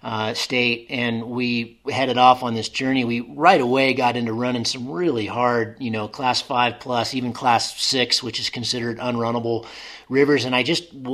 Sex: male